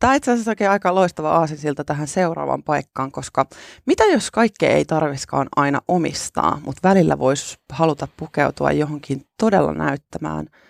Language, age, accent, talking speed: Finnish, 30-49, native, 150 wpm